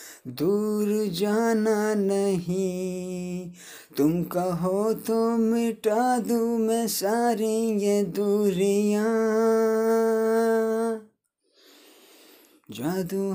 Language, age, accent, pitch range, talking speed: Hindi, 20-39, native, 195-225 Hz, 60 wpm